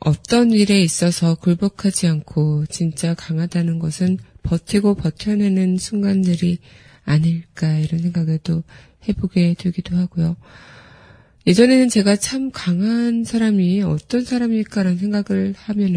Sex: female